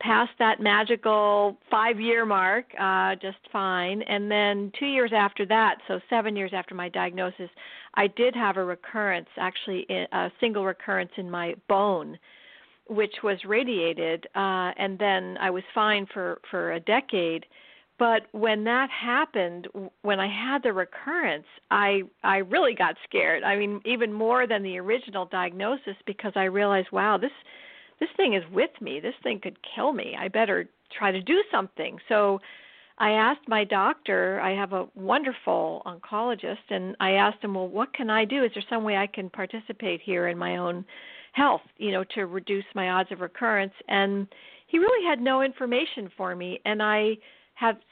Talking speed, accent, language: 175 wpm, American, English